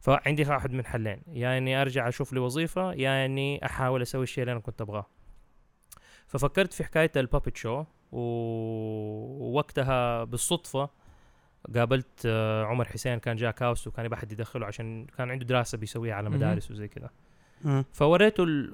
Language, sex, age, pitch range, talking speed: Arabic, male, 20-39, 120-155 Hz, 150 wpm